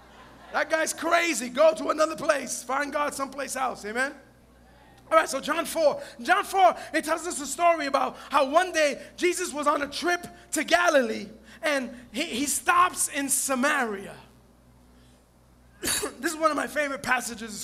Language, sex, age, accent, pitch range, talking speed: English, male, 20-39, American, 270-325 Hz, 165 wpm